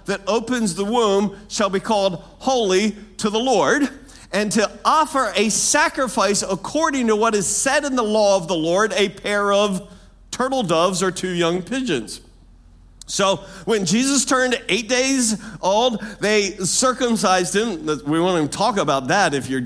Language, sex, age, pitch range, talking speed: English, male, 50-69, 180-245 Hz, 165 wpm